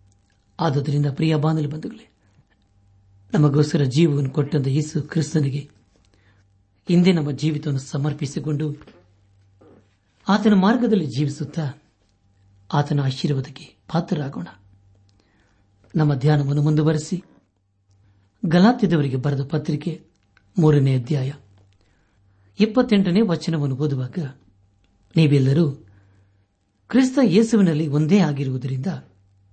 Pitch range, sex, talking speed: 100-160 Hz, male, 65 wpm